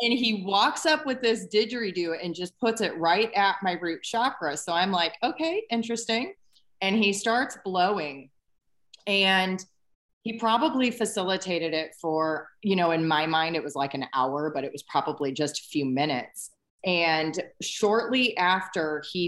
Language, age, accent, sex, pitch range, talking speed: English, 30-49, American, female, 165-210 Hz, 165 wpm